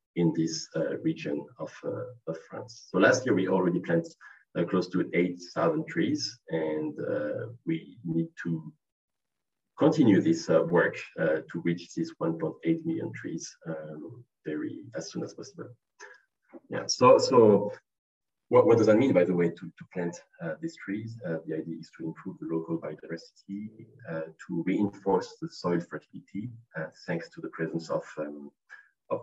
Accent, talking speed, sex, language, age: French, 170 wpm, male, English, 40-59